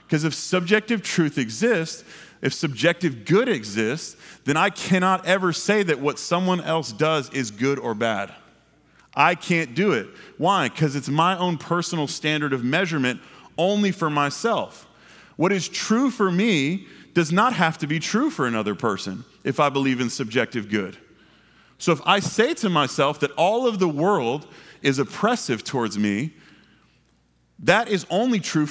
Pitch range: 145-190 Hz